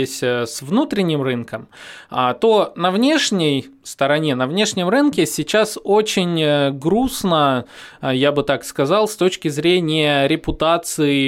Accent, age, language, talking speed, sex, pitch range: native, 20-39, Russian, 105 wpm, male, 130-175 Hz